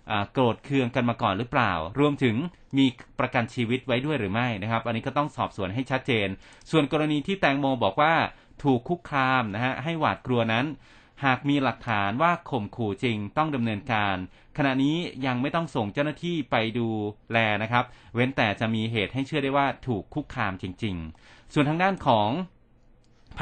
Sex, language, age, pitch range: male, Thai, 30-49, 110-140 Hz